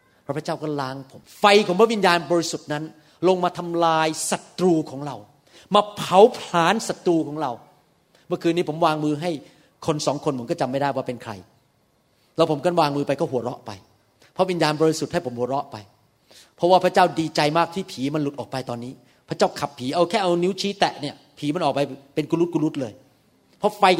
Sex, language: male, Thai